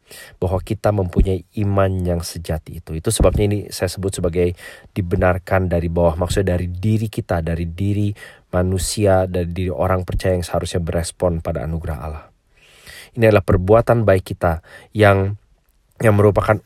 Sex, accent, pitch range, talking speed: male, Indonesian, 85-105 Hz, 150 wpm